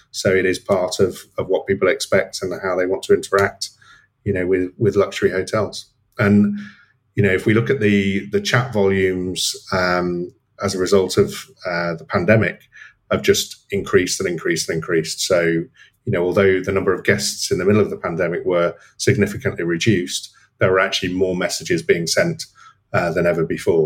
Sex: male